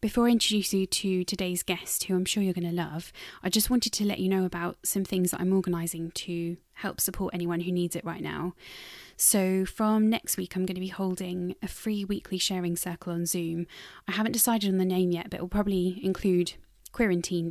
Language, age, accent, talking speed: English, 20-39, British, 225 wpm